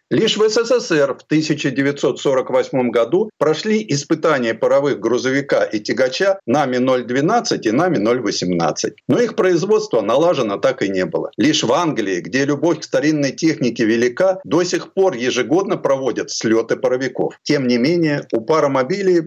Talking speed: 145 wpm